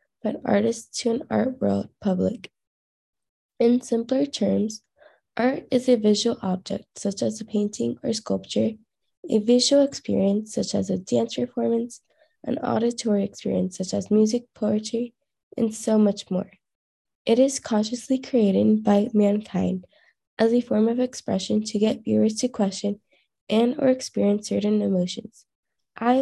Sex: female